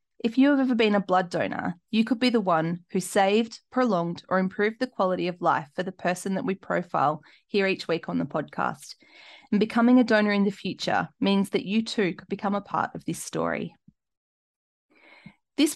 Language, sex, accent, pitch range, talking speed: English, female, Australian, 180-220 Hz, 200 wpm